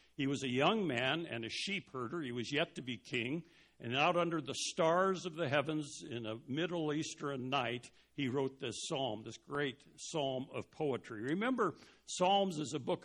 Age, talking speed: 60-79, 195 wpm